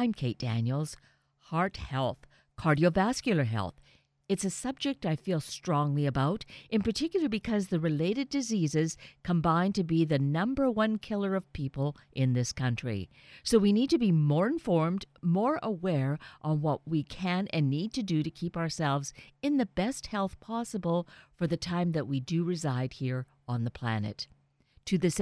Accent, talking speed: American, 165 wpm